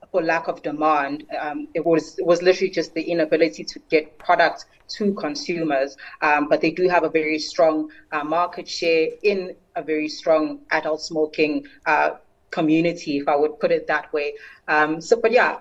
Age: 30-49